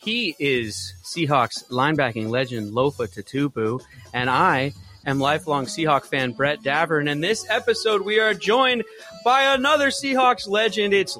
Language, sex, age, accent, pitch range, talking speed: English, male, 30-49, American, 120-170 Hz, 140 wpm